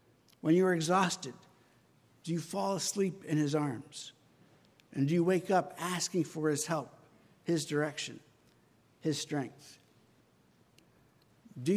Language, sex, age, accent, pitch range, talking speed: English, male, 60-79, American, 155-190 Hz, 125 wpm